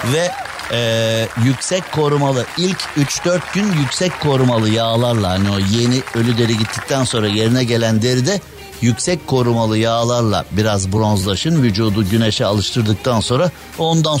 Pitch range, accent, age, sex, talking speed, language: 115-150 Hz, native, 60-79, male, 130 wpm, Turkish